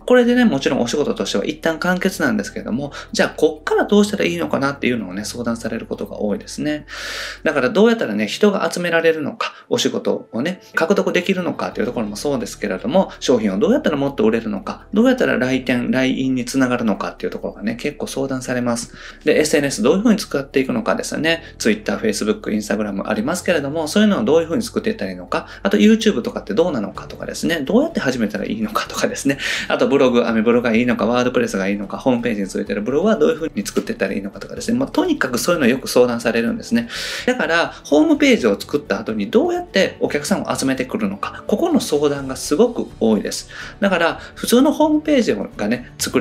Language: Japanese